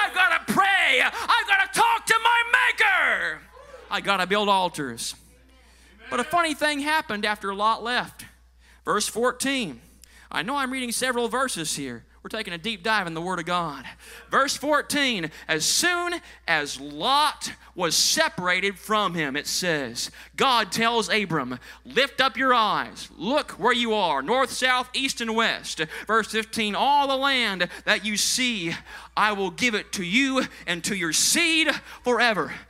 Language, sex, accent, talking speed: English, male, American, 165 wpm